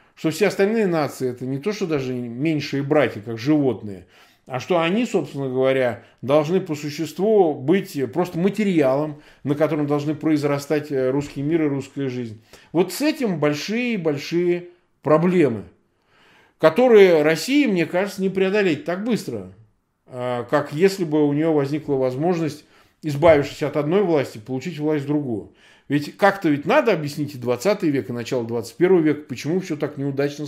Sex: male